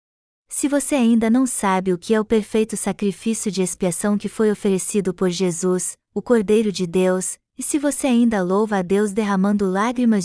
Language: Portuguese